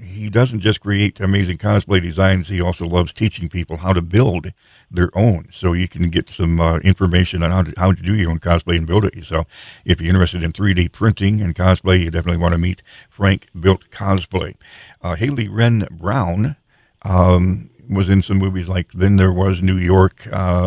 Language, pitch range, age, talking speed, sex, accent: English, 90-100 Hz, 60-79, 200 wpm, male, American